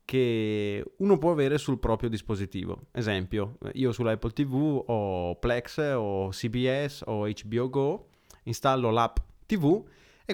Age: 30-49